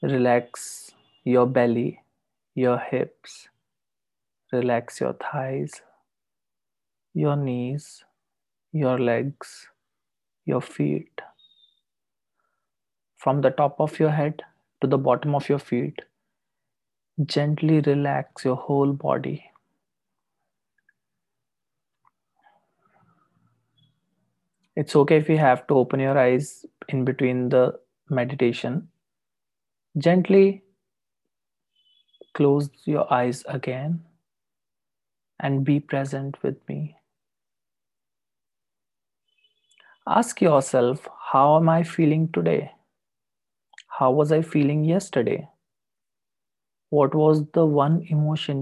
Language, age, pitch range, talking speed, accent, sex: English, 30-49, 125-155 Hz, 90 wpm, Indian, male